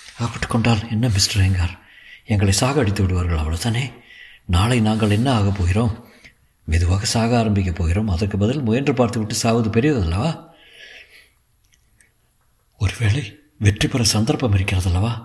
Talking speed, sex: 100 wpm, male